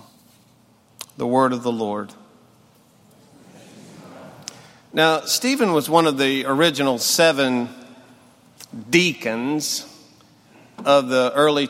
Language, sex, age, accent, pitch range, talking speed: English, male, 50-69, American, 130-170 Hz, 85 wpm